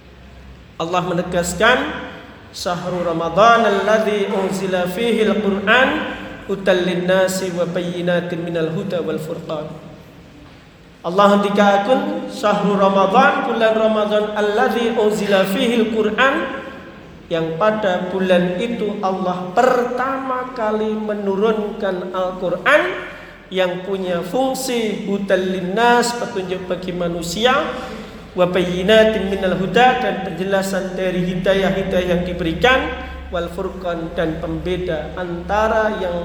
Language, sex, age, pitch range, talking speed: Indonesian, male, 50-69, 175-225 Hz, 90 wpm